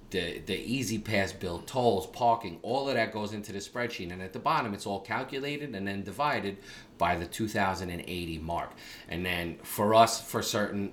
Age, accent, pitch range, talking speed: 30-49, American, 90-115 Hz, 185 wpm